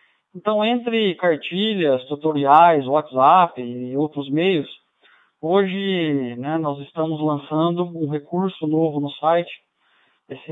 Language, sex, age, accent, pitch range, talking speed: Portuguese, male, 20-39, Brazilian, 145-175 Hz, 110 wpm